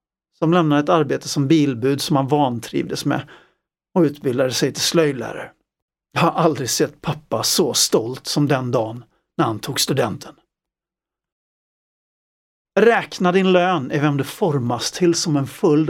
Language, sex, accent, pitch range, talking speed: Swedish, male, native, 145-190 Hz, 150 wpm